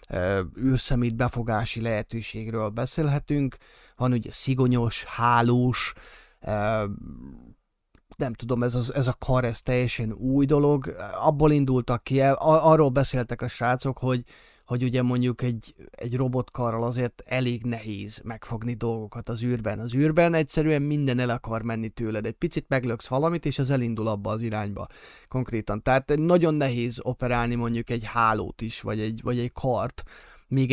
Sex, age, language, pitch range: male, 30-49, Hungarian, 115-135 Hz